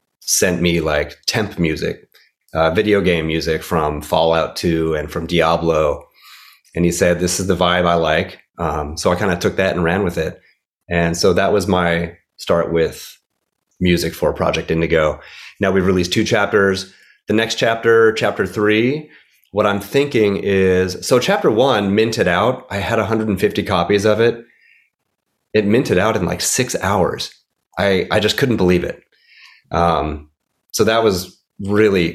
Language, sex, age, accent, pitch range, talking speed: English, male, 30-49, American, 85-110 Hz, 165 wpm